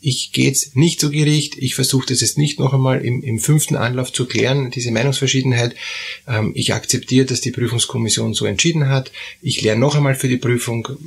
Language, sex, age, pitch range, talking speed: German, male, 30-49, 105-140 Hz, 195 wpm